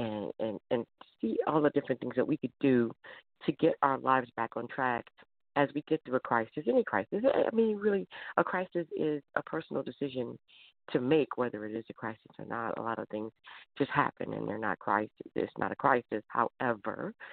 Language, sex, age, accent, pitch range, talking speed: English, female, 40-59, American, 120-160 Hz, 205 wpm